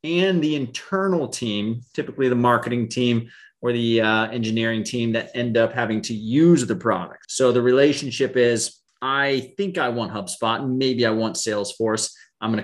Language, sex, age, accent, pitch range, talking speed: English, male, 30-49, American, 110-135 Hz, 170 wpm